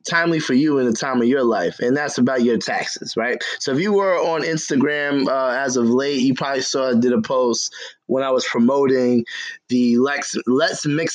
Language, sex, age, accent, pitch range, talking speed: English, male, 20-39, American, 125-150 Hz, 210 wpm